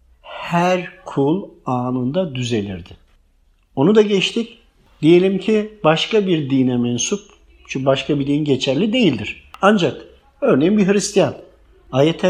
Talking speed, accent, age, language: 115 wpm, native, 50-69, Turkish